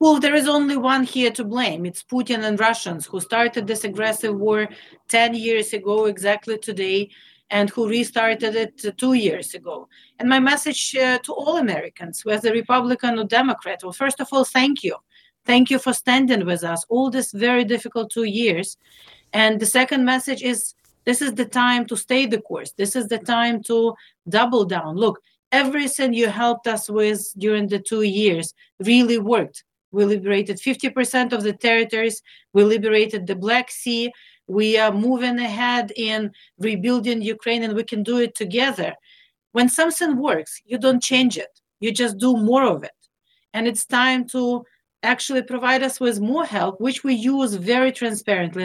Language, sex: English, female